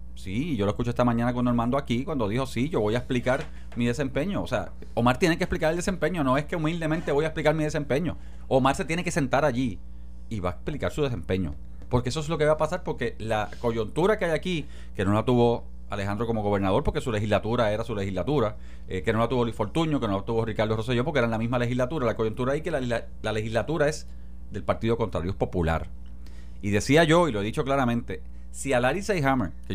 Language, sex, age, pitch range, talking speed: Spanish, male, 30-49, 95-145 Hz, 240 wpm